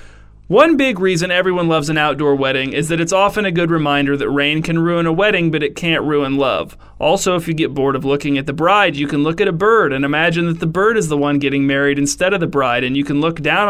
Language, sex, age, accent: English, male, 30-49, American